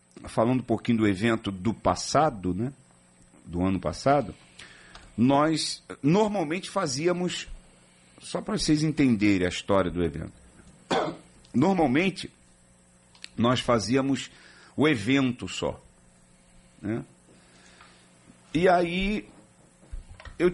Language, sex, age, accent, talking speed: Portuguese, male, 50-69, Brazilian, 95 wpm